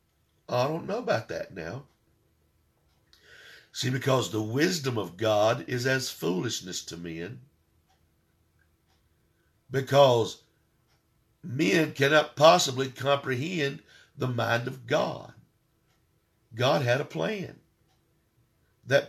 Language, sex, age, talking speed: English, male, 60-79, 95 wpm